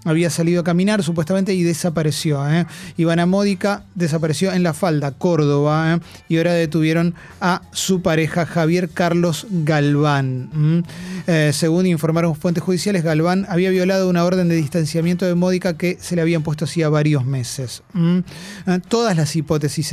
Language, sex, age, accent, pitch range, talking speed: Spanish, male, 30-49, Argentinian, 155-185 Hz, 155 wpm